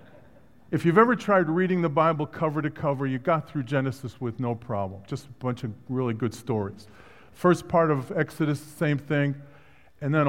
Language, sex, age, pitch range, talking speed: English, male, 50-69, 120-160 Hz, 185 wpm